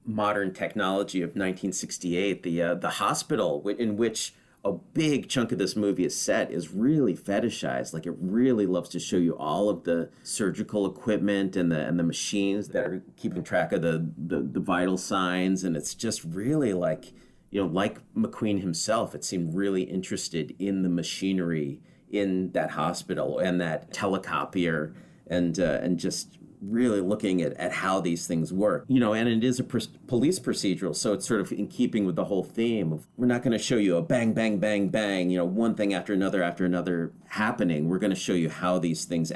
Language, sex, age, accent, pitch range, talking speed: English, male, 40-59, American, 85-105 Hz, 200 wpm